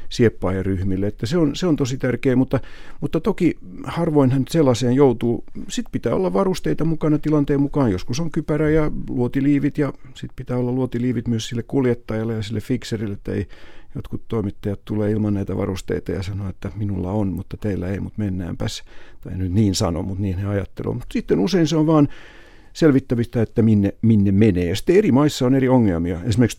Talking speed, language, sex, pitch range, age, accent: 185 wpm, Finnish, male, 95-125 Hz, 50-69, native